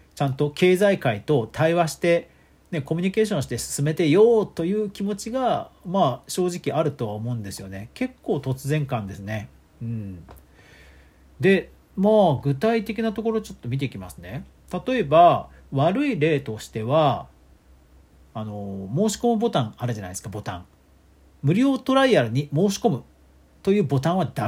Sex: male